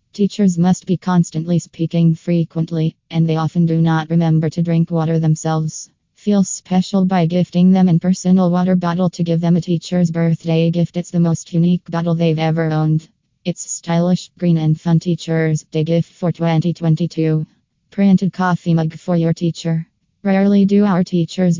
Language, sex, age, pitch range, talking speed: English, female, 20-39, 160-180 Hz, 165 wpm